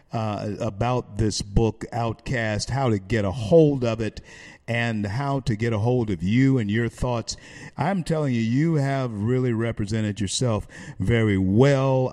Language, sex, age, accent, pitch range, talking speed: English, male, 50-69, American, 115-160 Hz, 165 wpm